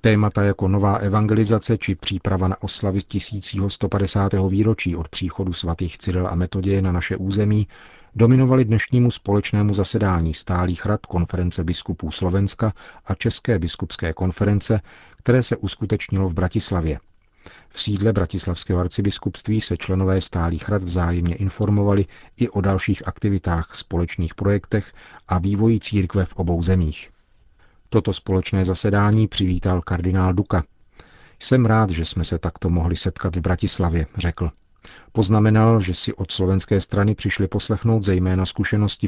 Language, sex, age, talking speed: Czech, male, 40-59, 130 wpm